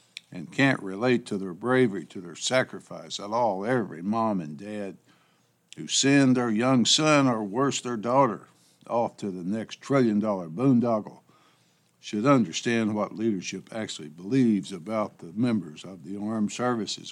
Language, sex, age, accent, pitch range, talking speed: English, male, 60-79, American, 100-130 Hz, 150 wpm